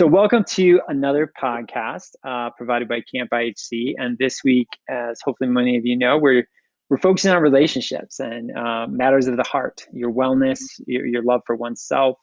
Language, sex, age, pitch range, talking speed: English, male, 20-39, 120-140 Hz, 180 wpm